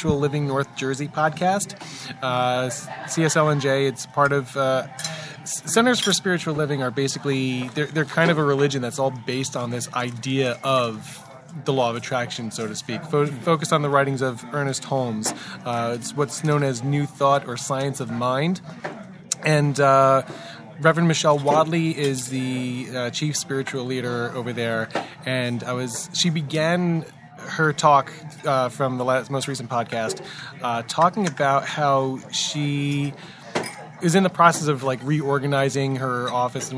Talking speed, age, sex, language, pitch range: 160 wpm, 20-39, male, English, 130-160 Hz